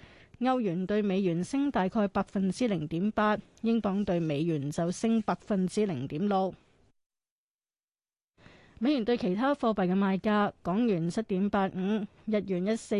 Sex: female